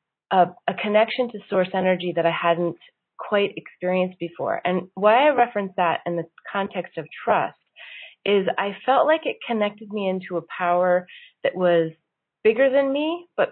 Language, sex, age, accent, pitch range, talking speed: English, female, 30-49, American, 165-195 Hz, 170 wpm